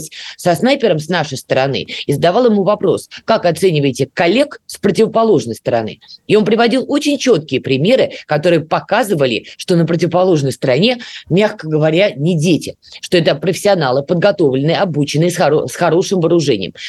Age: 20-39